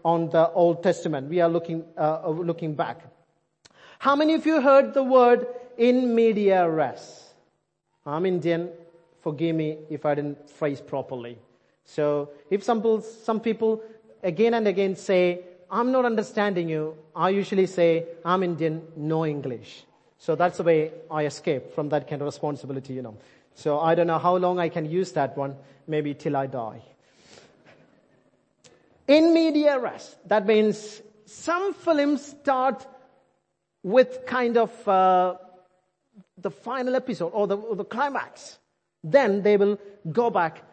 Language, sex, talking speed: English, male, 150 wpm